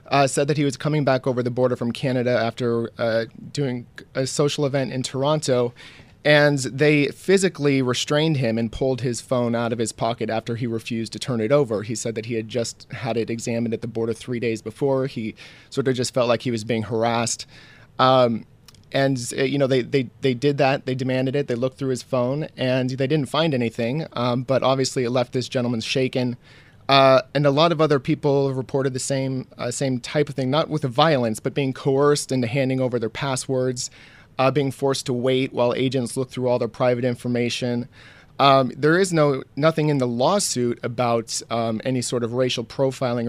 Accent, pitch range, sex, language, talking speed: American, 120-135 Hz, male, English, 210 wpm